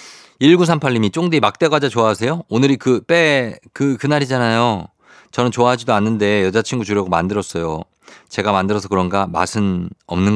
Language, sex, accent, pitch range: Korean, male, native, 95-125 Hz